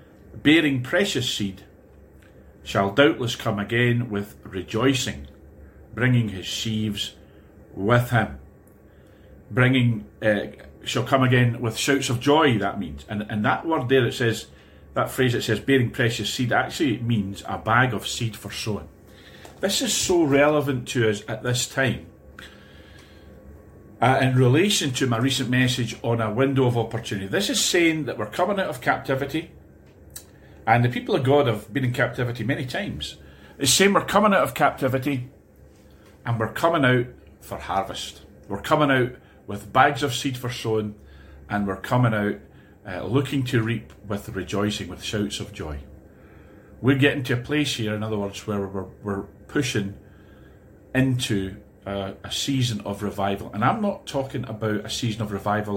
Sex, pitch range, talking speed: male, 100-130 Hz, 165 wpm